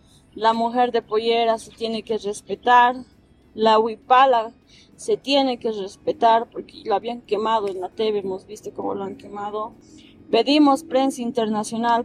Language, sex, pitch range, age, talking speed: Spanish, female, 205-250 Hz, 20-39, 150 wpm